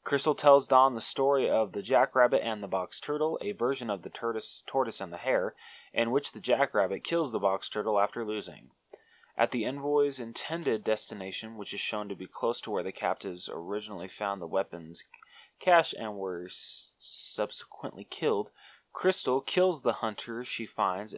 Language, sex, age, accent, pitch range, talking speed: English, male, 20-39, American, 105-135 Hz, 175 wpm